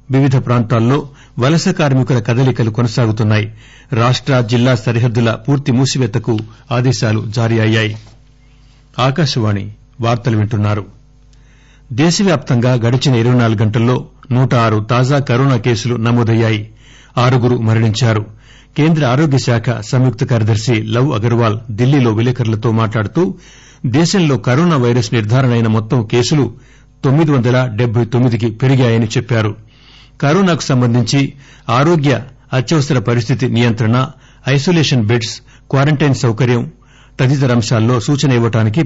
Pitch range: 115-135 Hz